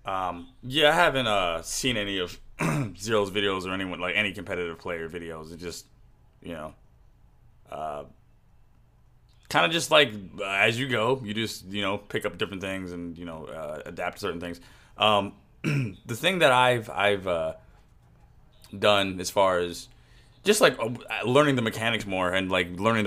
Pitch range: 90-115 Hz